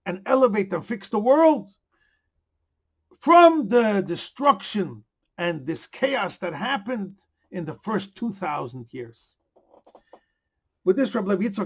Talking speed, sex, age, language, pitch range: 120 wpm, male, 50-69, English, 155-205 Hz